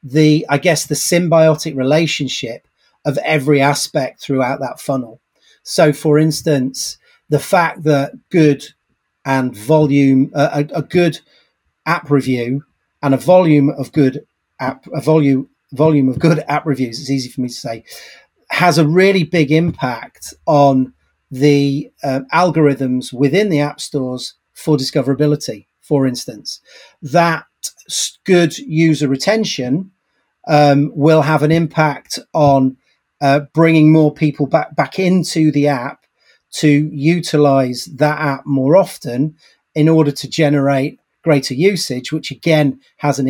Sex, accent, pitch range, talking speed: male, British, 140-160 Hz, 135 wpm